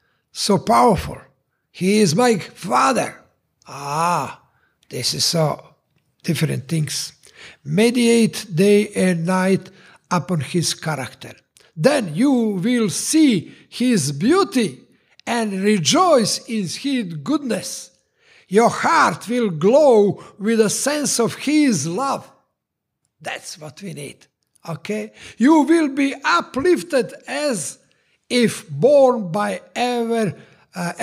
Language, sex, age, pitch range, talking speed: English, male, 60-79, 175-250 Hz, 105 wpm